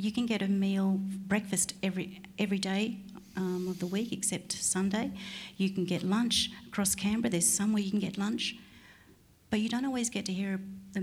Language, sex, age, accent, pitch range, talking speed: English, female, 50-69, Australian, 180-210 Hz, 190 wpm